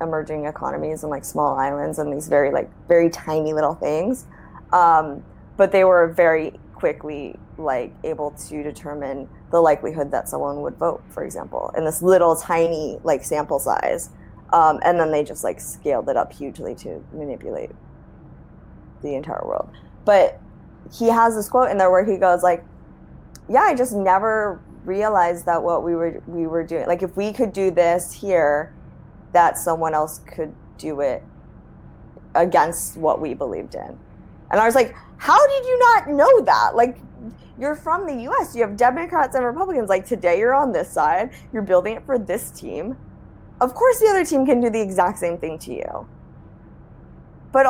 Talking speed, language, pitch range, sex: 175 wpm, English, 160-245 Hz, female